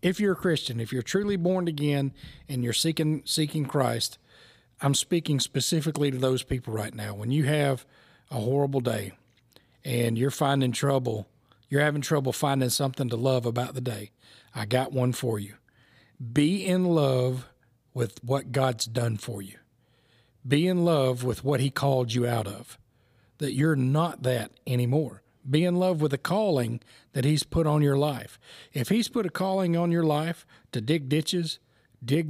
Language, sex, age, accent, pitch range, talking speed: English, male, 40-59, American, 120-155 Hz, 175 wpm